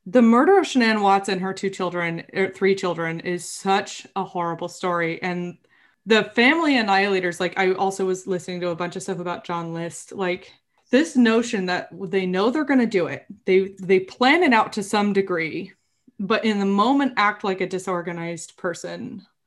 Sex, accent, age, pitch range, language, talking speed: female, American, 20-39, 175-210 Hz, English, 195 wpm